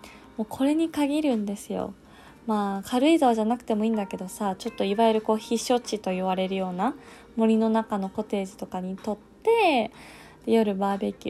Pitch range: 200-255 Hz